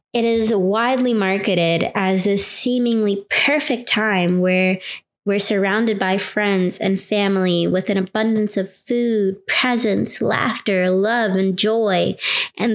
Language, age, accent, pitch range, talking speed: English, 20-39, American, 195-225 Hz, 125 wpm